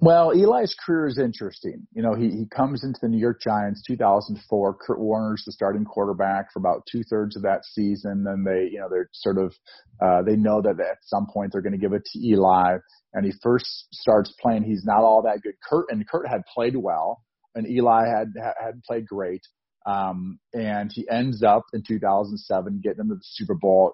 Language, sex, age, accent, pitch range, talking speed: English, male, 40-59, American, 100-120 Hz, 210 wpm